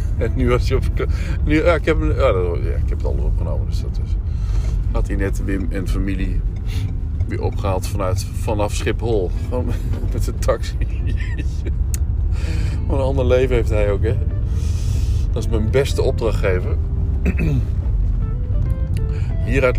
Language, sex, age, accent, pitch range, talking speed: Dutch, male, 50-69, Dutch, 90-100 Hz, 150 wpm